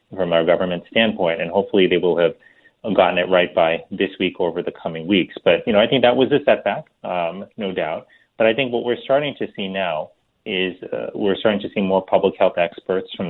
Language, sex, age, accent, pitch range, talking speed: English, male, 30-49, American, 85-100 Hz, 230 wpm